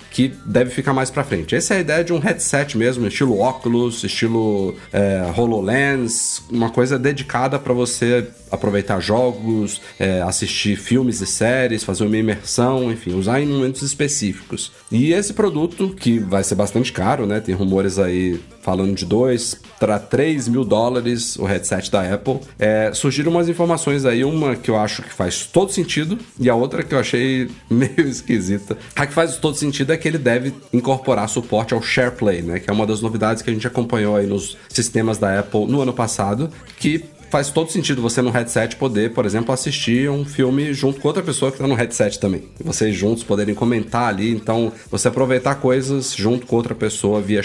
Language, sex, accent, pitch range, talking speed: Portuguese, male, Brazilian, 105-135 Hz, 185 wpm